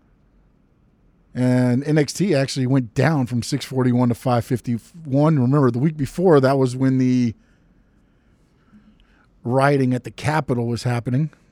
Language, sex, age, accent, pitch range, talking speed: English, male, 40-59, American, 125-150 Hz, 120 wpm